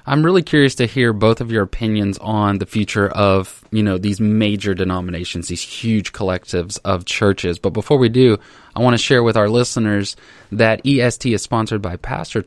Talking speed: 195 wpm